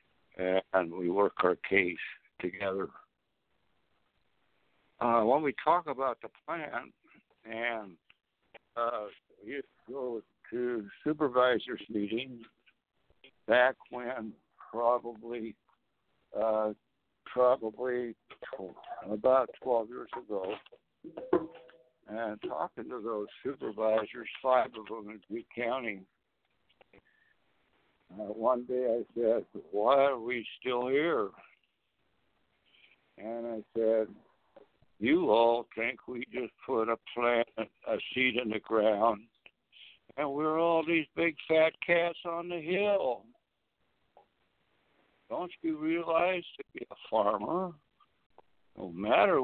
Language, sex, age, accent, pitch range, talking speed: English, male, 60-79, American, 110-165 Hz, 105 wpm